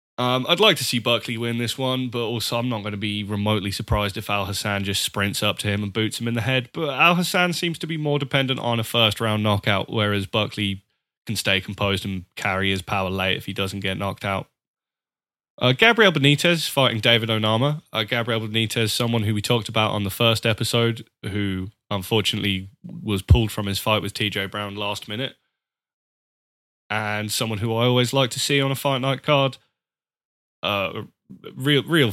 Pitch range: 105-130 Hz